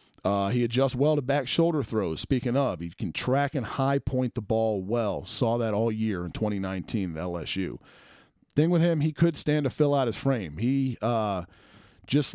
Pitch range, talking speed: 110-145 Hz, 200 wpm